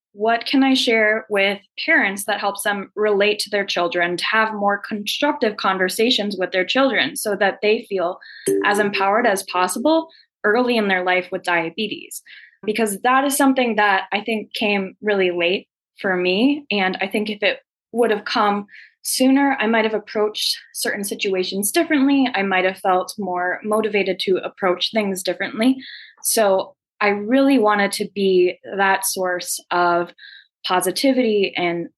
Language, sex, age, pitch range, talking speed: English, female, 20-39, 180-225 Hz, 160 wpm